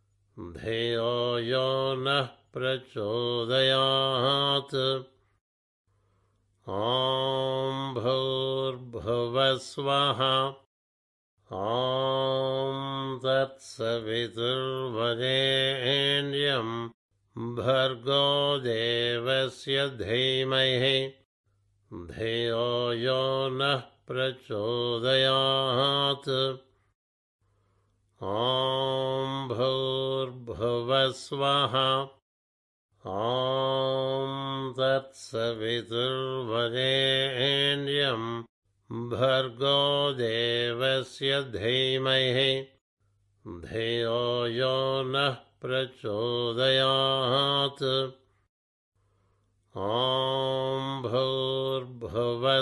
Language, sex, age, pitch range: Telugu, male, 60-79, 115-135 Hz